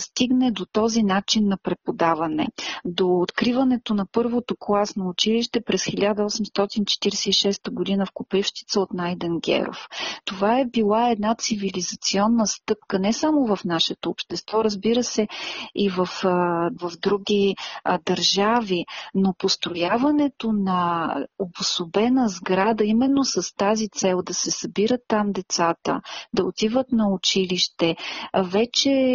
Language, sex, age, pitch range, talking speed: Bulgarian, female, 40-59, 190-240 Hz, 115 wpm